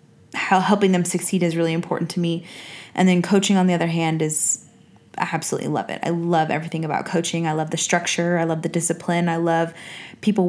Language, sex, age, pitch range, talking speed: English, female, 20-39, 170-200 Hz, 205 wpm